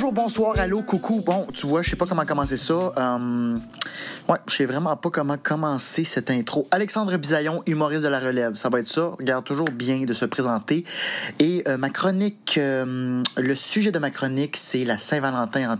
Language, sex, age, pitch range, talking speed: French, male, 30-49, 125-170 Hz, 200 wpm